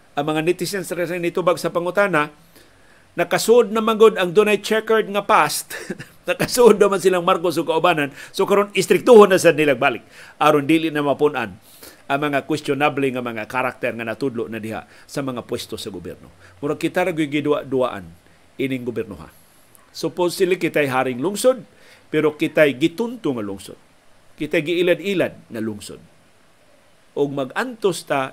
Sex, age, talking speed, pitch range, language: male, 50-69, 150 wpm, 130-180 Hz, Filipino